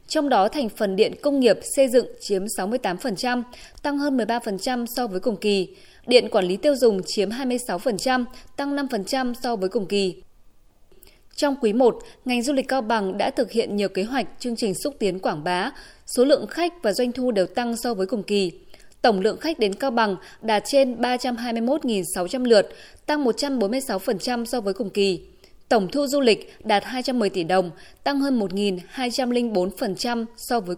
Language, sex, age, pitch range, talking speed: Vietnamese, female, 20-39, 205-270 Hz, 180 wpm